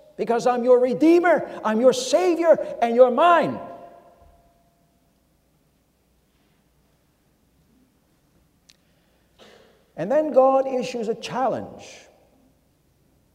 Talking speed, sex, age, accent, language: 70 wpm, male, 60-79, American, English